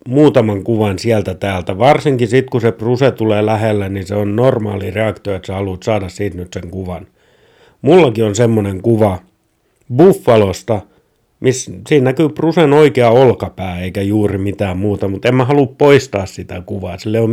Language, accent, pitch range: Finnish, native, 100-130 Hz